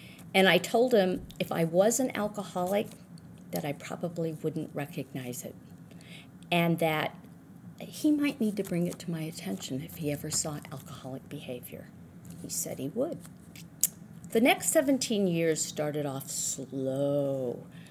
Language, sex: English, female